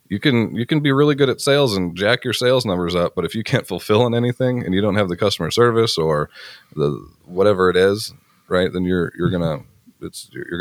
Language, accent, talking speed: English, American, 230 wpm